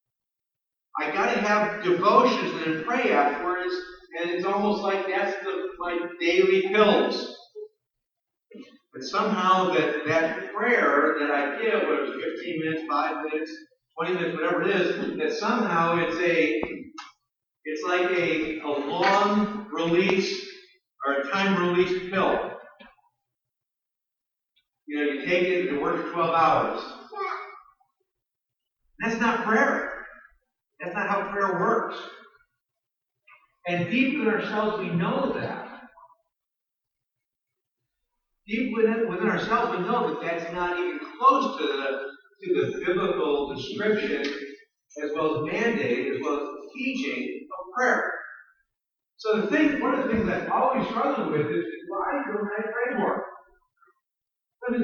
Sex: male